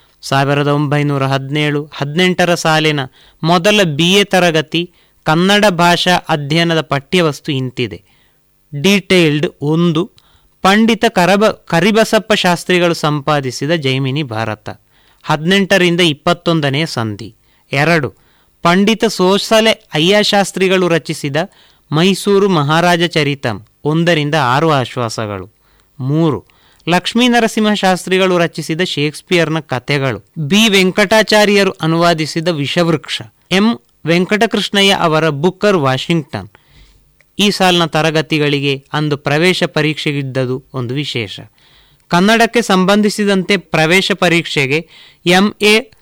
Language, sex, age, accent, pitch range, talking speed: Kannada, male, 30-49, native, 145-190 Hz, 85 wpm